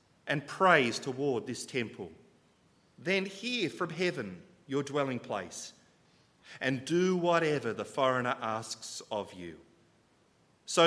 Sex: male